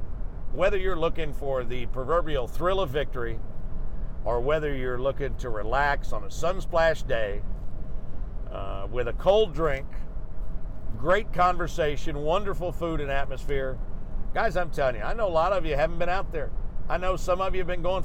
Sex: male